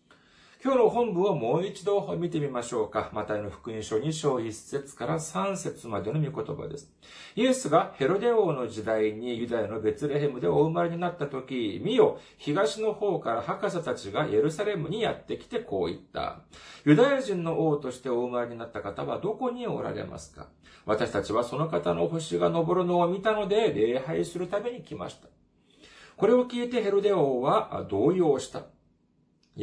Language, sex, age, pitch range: Japanese, male, 40-59, 110-175 Hz